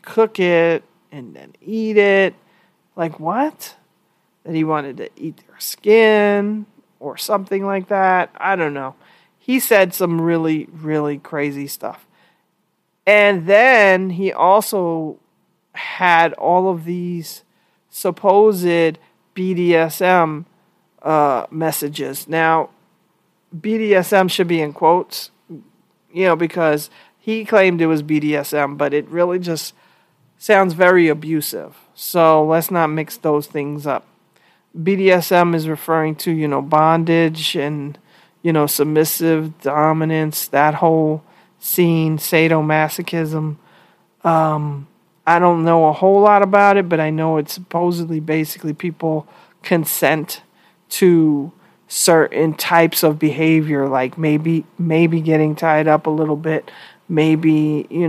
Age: 40-59